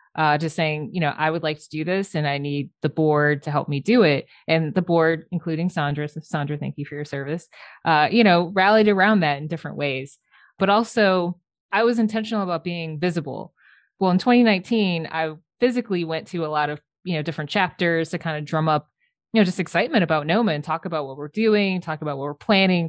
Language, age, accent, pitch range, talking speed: English, 20-39, American, 150-185 Hz, 225 wpm